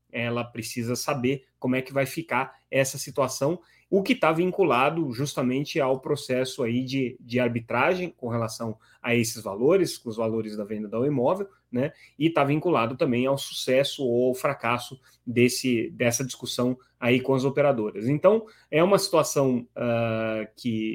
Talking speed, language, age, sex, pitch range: 160 wpm, Portuguese, 30-49, male, 115-135 Hz